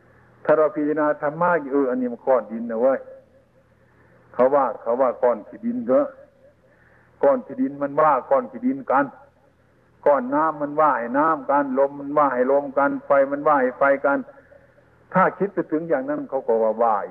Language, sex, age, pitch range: Thai, male, 60-79, 140-195 Hz